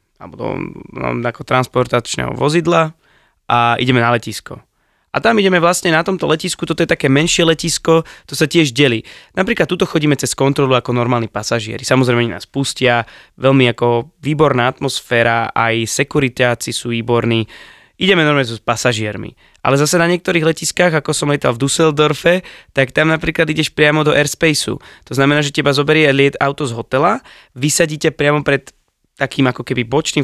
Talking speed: 160 wpm